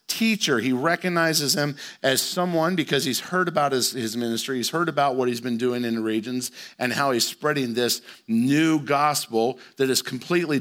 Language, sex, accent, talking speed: English, male, American, 185 wpm